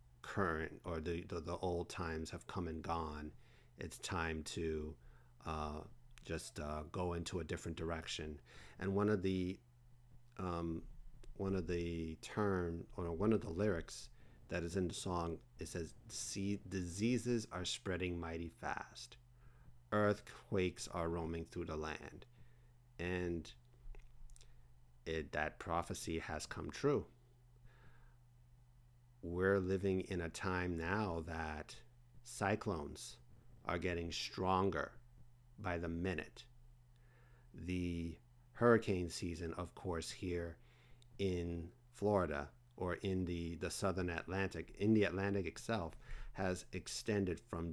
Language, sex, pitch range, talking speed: English, male, 85-120 Hz, 125 wpm